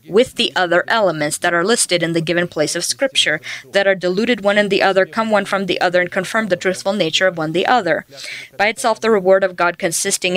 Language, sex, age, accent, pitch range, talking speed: English, female, 20-39, American, 165-200 Hz, 235 wpm